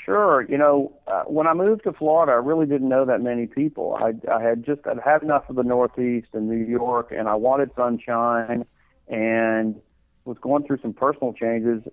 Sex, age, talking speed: male, 40-59, 195 wpm